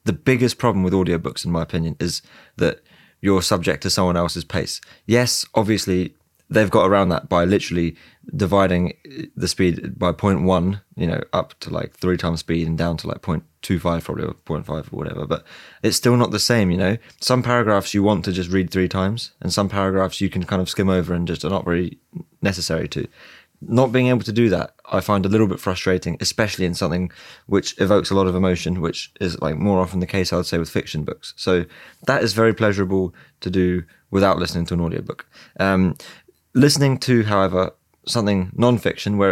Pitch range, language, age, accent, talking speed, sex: 90-105 Hz, English, 20-39, British, 205 wpm, male